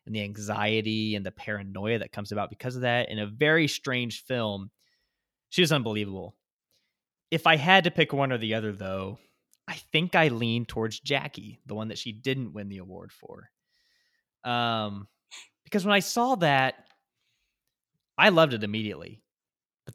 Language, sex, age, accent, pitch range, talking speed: English, male, 20-39, American, 105-125 Hz, 170 wpm